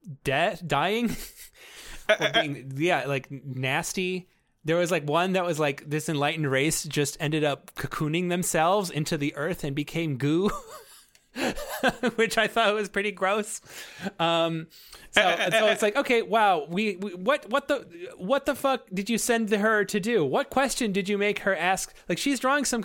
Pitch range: 175-250 Hz